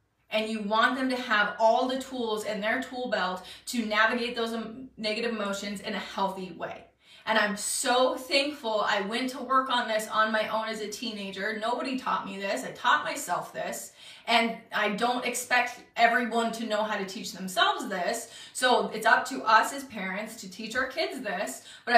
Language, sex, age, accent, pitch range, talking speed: English, female, 20-39, American, 210-260 Hz, 195 wpm